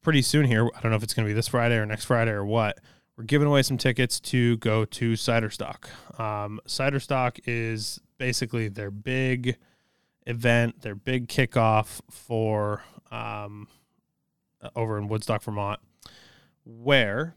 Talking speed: 150 wpm